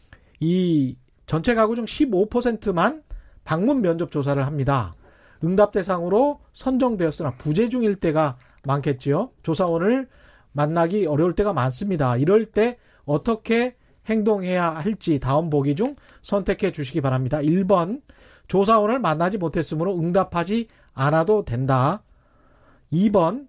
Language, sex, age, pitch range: Korean, male, 40-59, 150-215 Hz